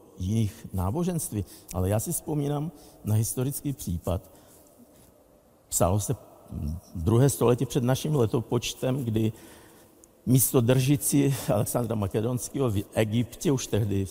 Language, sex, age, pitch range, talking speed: Czech, male, 50-69, 105-130 Hz, 105 wpm